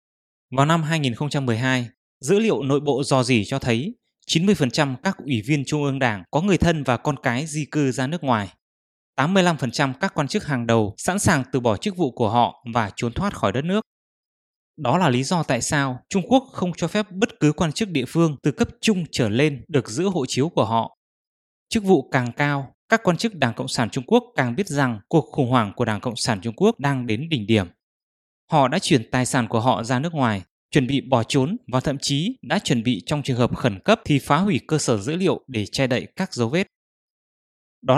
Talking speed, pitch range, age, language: 230 wpm, 125-165 Hz, 20-39, English